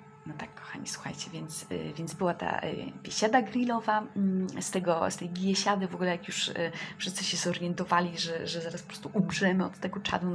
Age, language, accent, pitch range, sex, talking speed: 20-39, Polish, native, 155-185 Hz, female, 180 wpm